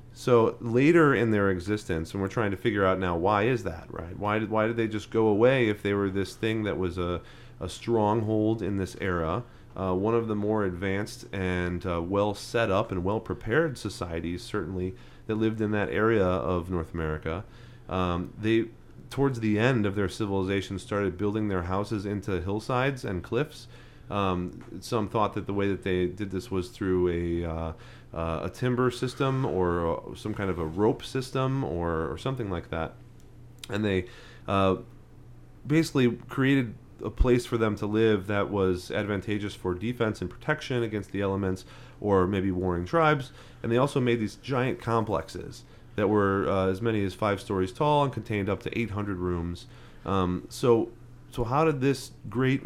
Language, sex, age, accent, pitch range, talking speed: English, male, 30-49, American, 95-120 Hz, 180 wpm